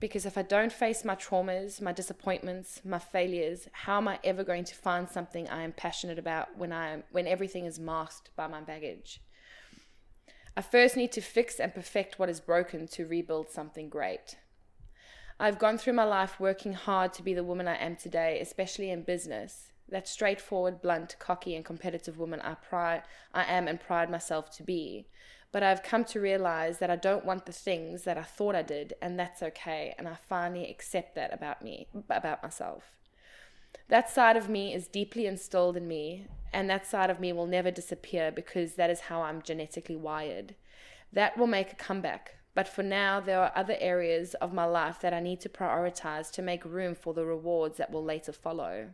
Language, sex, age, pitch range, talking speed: English, female, 20-39, 165-195 Hz, 195 wpm